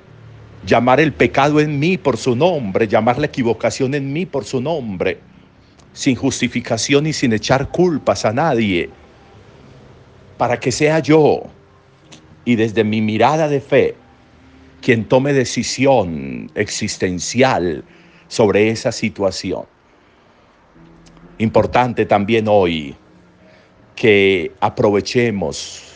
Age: 50-69